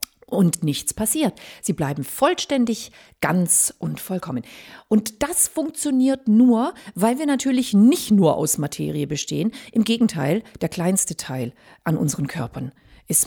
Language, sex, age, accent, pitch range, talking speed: German, female, 40-59, German, 165-255 Hz, 135 wpm